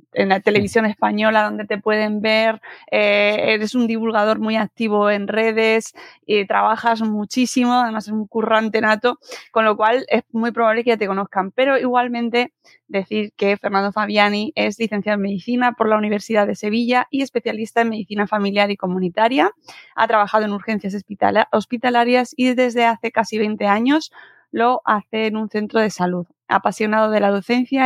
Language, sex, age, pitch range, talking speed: Spanish, female, 20-39, 205-240 Hz, 170 wpm